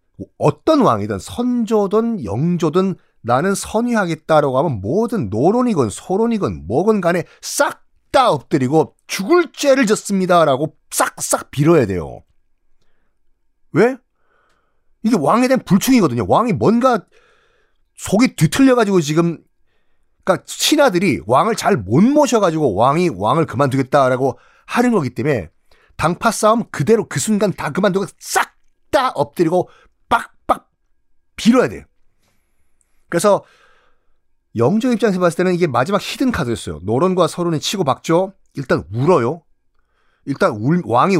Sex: male